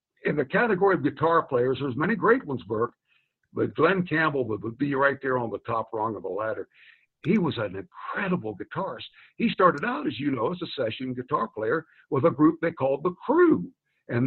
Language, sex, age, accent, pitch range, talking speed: English, male, 60-79, American, 145-215 Hz, 205 wpm